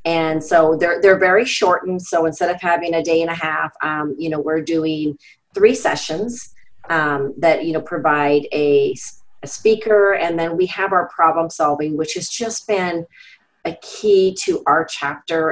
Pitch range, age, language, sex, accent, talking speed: 155-180 Hz, 30-49, English, female, American, 180 wpm